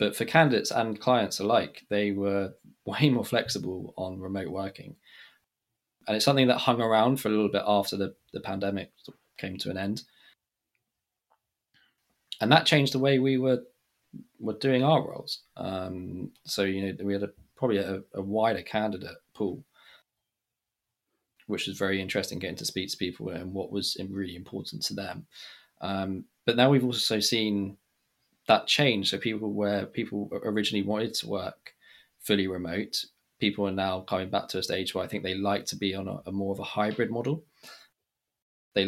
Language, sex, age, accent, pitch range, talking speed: English, male, 20-39, British, 95-110 Hz, 175 wpm